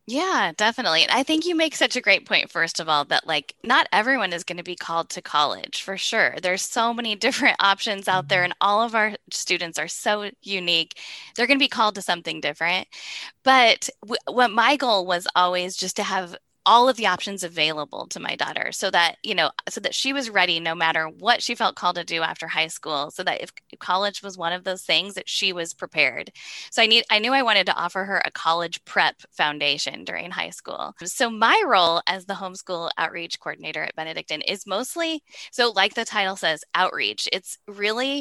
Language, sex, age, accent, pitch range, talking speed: English, female, 10-29, American, 180-245 Hz, 215 wpm